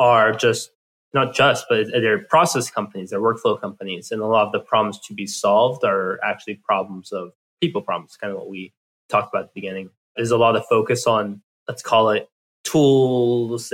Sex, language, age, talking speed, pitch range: male, English, 20-39, 195 wpm, 105-130 Hz